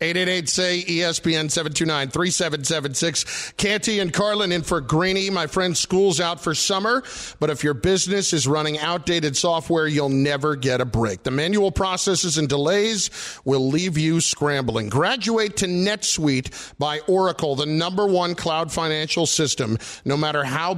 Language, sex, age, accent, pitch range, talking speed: English, male, 40-59, American, 150-190 Hz, 140 wpm